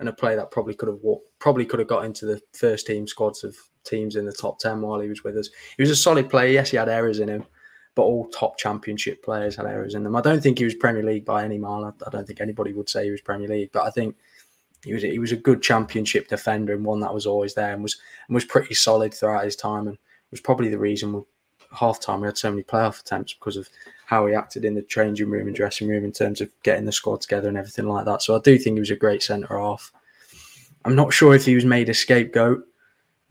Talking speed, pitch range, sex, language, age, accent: 270 wpm, 105-115 Hz, male, English, 20-39, British